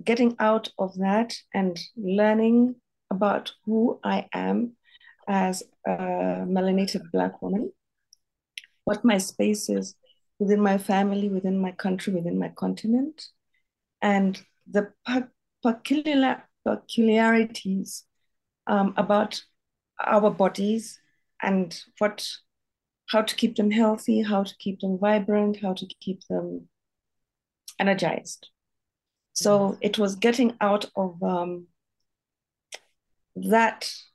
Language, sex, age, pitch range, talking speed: English, female, 30-49, 185-220 Hz, 105 wpm